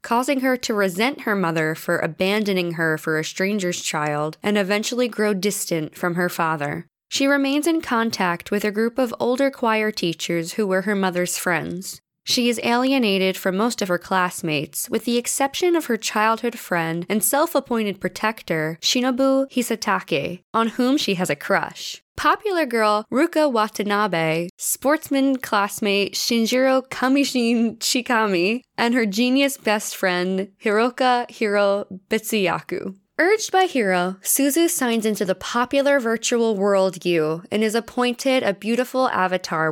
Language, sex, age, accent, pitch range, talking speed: English, female, 10-29, American, 180-250 Hz, 145 wpm